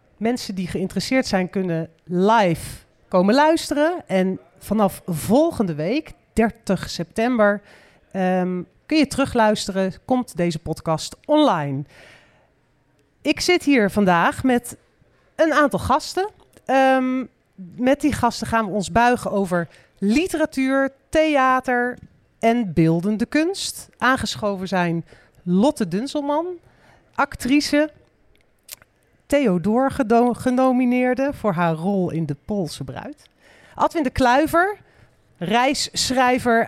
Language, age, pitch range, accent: Dutch, 40-59, 190-270 Hz, Dutch